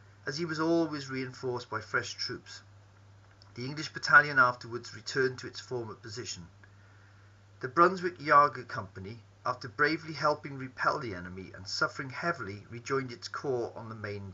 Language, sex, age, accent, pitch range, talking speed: English, male, 40-59, British, 100-135 Hz, 150 wpm